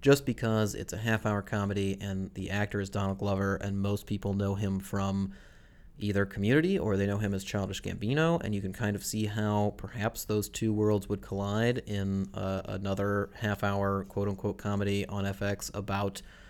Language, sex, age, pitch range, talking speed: English, male, 30-49, 95-105 Hz, 180 wpm